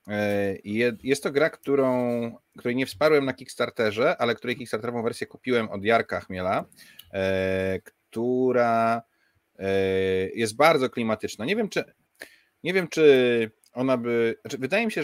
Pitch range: 100-130 Hz